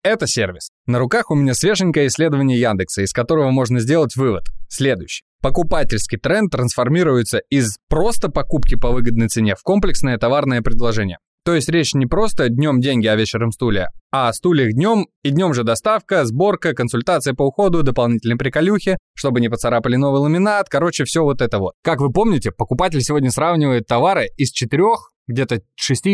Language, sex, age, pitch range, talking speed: Russian, male, 20-39, 120-160 Hz, 165 wpm